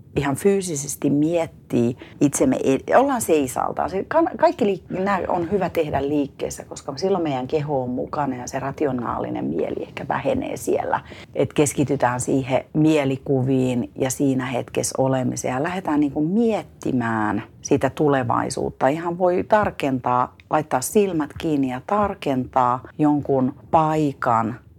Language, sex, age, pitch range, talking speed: Finnish, female, 40-59, 130-160 Hz, 120 wpm